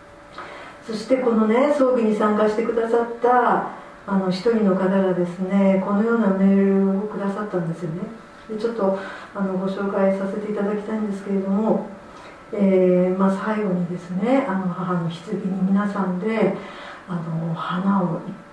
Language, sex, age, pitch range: Japanese, female, 50-69, 180-210 Hz